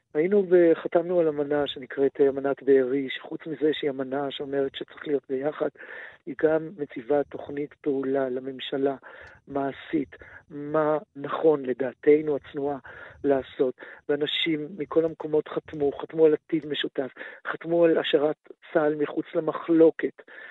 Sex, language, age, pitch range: male, Hebrew, 50-69, 150-205 Hz